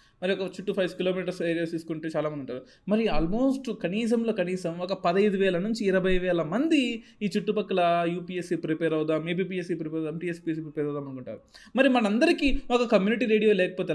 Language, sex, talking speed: Telugu, male, 165 wpm